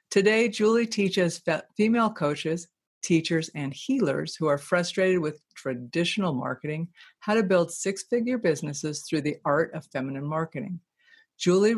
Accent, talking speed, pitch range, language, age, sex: American, 130 wpm, 145-195 Hz, English, 50-69, female